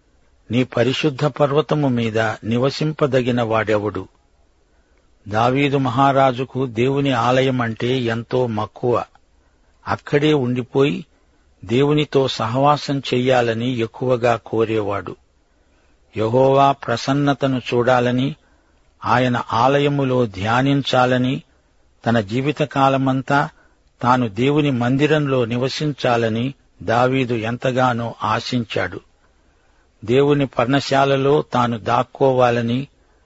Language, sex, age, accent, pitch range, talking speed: Telugu, male, 50-69, native, 110-135 Hz, 65 wpm